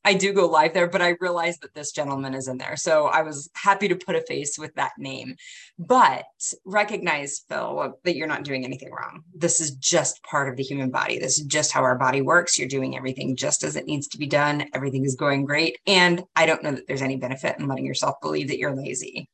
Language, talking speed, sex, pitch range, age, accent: English, 240 wpm, female, 140-185 Hz, 30-49, American